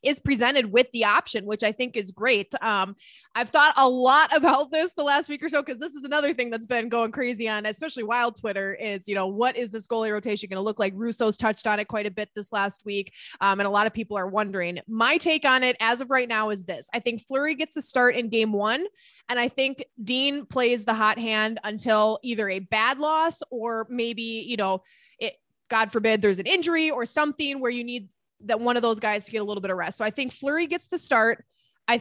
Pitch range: 215-265 Hz